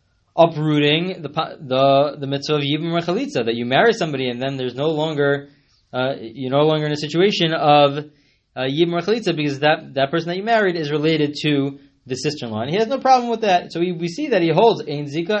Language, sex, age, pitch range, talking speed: English, male, 20-39, 130-175 Hz, 220 wpm